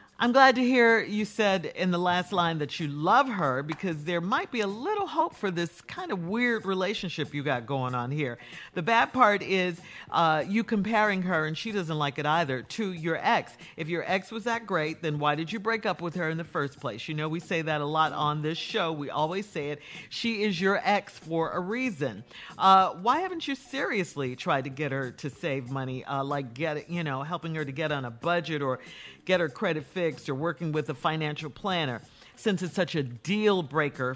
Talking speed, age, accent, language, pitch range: 225 wpm, 50-69, American, English, 150-210 Hz